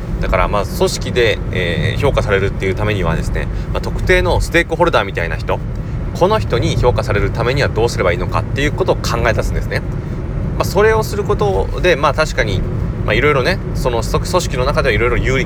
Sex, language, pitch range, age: male, Japanese, 95-125 Hz, 30-49